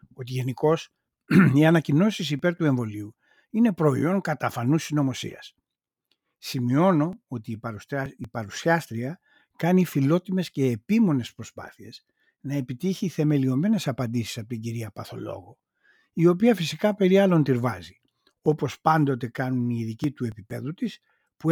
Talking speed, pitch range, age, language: 120 wpm, 125-170 Hz, 60-79, Greek